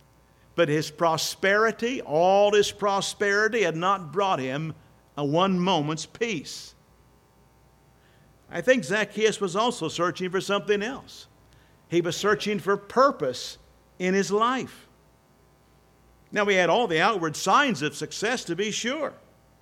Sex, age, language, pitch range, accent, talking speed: male, 50-69, English, 150-205 Hz, American, 130 wpm